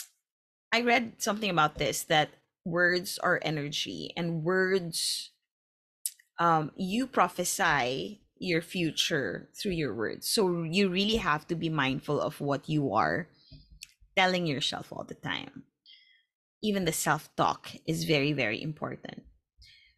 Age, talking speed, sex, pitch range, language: 20-39, 125 wpm, female, 155-220 Hz, Filipino